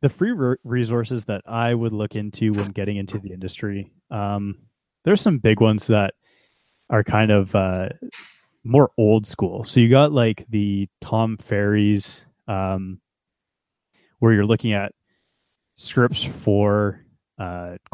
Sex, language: male, English